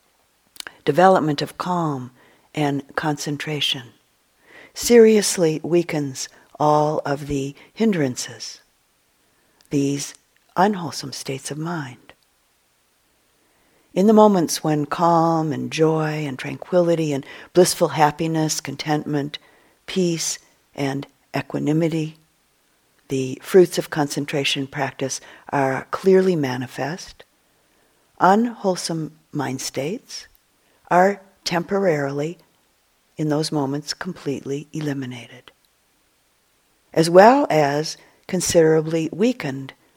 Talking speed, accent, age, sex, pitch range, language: 85 wpm, American, 50-69, female, 140-170 Hz, English